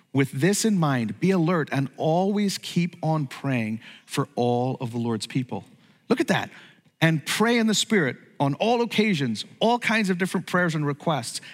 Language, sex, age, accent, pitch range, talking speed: English, male, 40-59, American, 160-225 Hz, 180 wpm